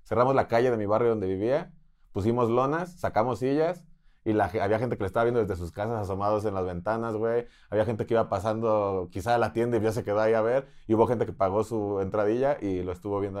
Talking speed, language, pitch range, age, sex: 245 wpm, Spanish, 110-150 Hz, 30-49, male